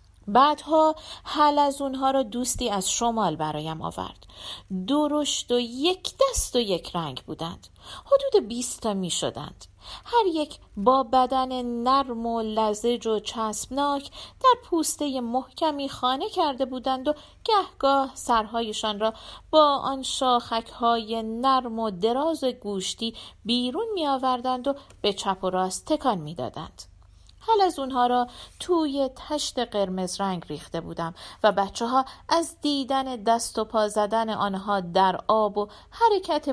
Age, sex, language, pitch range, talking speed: 40-59, female, Persian, 200-275 Hz, 140 wpm